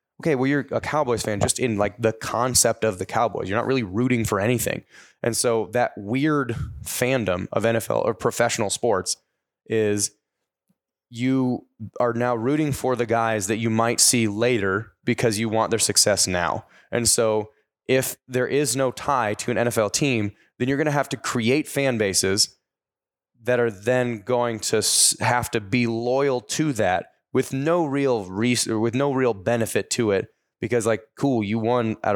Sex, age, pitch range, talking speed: male, 20-39, 110-130 Hz, 180 wpm